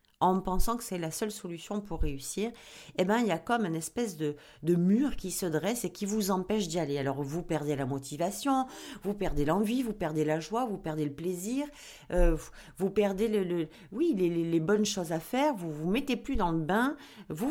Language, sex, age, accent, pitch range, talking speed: French, female, 40-59, French, 170-235 Hz, 230 wpm